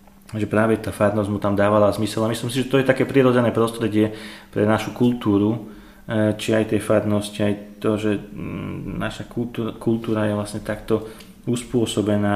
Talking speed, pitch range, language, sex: 160 wpm, 100-110 Hz, Slovak, male